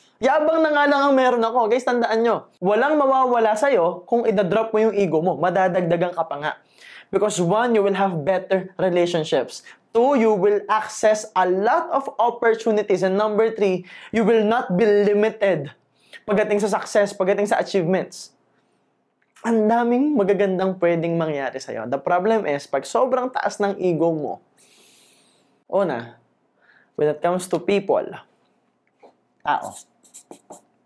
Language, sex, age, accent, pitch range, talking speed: Filipino, male, 20-39, native, 165-220 Hz, 140 wpm